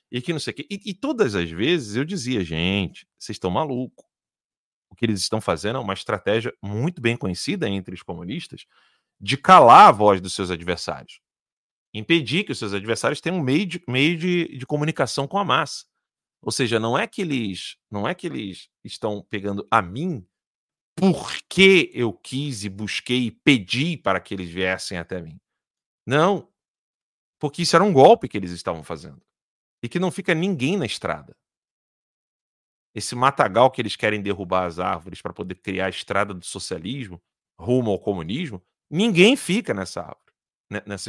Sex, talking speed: male, 160 wpm